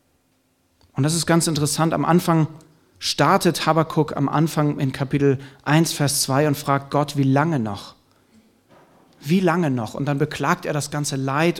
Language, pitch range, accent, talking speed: German, 125-165 Hz, German, 165 wpm